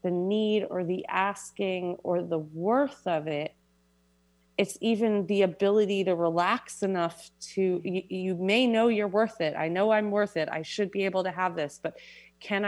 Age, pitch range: 30-49, 155-195 Hz